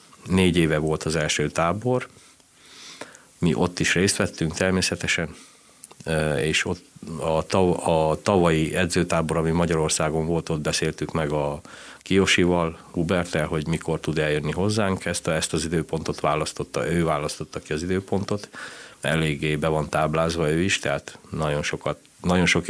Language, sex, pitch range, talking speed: Hungarian, male, 75-90 Hz, 140 wpm